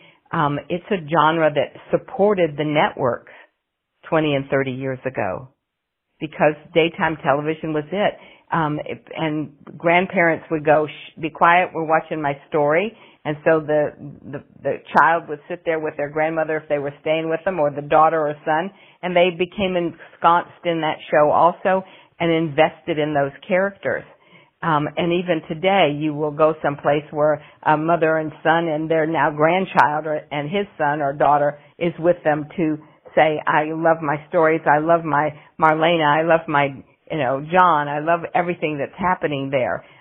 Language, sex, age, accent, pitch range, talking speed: English, female, 50-69, American, 150-170 Hz, 170 wpm